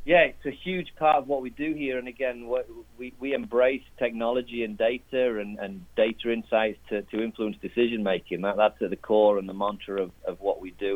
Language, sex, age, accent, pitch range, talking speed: English, male, 30-49, British, 95-115 Hz, 215 wpm